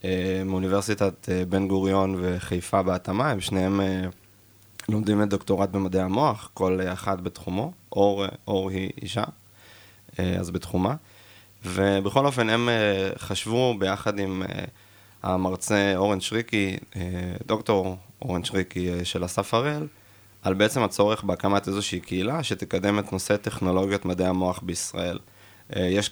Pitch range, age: 95-105 Hz, 20-39